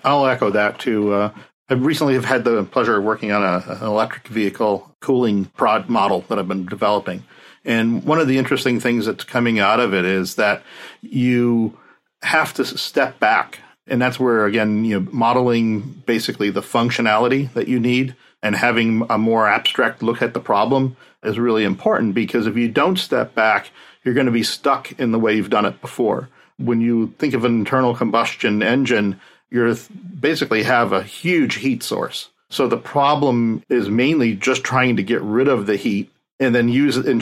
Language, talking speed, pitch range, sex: English, 190 wpm, 105-130 Hz, male